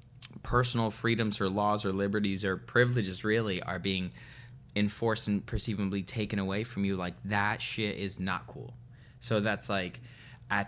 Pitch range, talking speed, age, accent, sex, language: 100-125 Hz, 155 wpm, 20-39, American, male, English